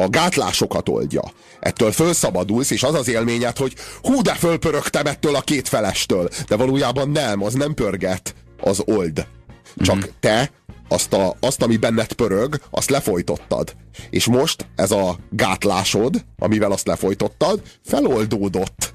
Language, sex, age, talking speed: Hungarian, male, 30-49, 140 wpm